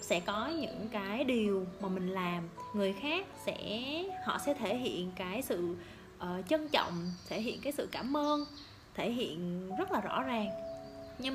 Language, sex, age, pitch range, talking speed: Vietnamese, female, 20-39, 185-295 Hz, 175 wpm